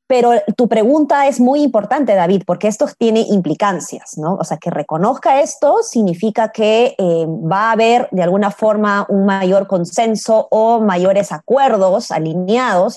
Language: Spanish